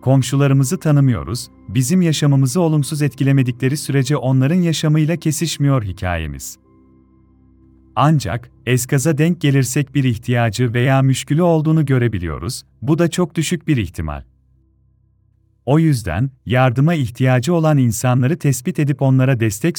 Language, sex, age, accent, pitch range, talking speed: Turkish, male, 40-59, native, 120-155 Hz, 110 wpm